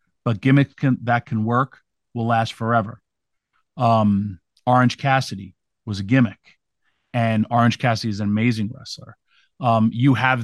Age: 40-59